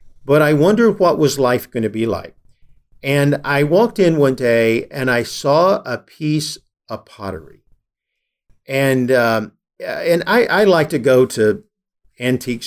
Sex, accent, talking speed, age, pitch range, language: male, American, 155 wpm, 50-69, 115-155 Hz, English